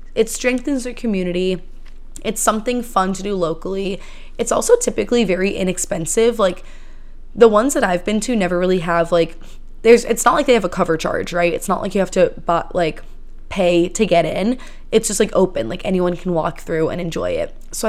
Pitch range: 175-210 Hz